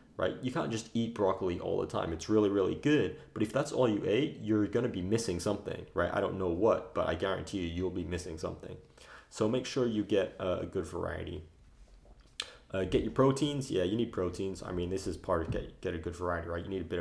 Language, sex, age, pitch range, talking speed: English, male, 30-49, 90-115 Hz, 245 wpm